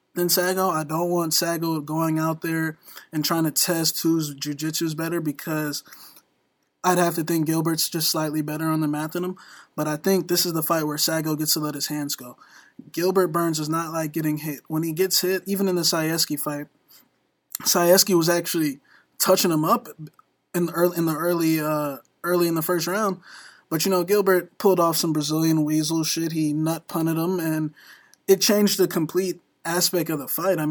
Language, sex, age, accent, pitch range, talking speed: English, male, 20-39, American, 155-180 Hz, 195 wpm